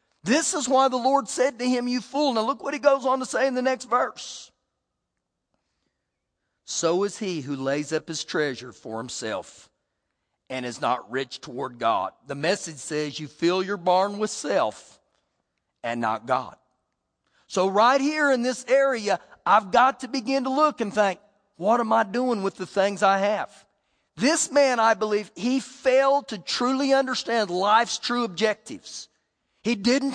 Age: 40-59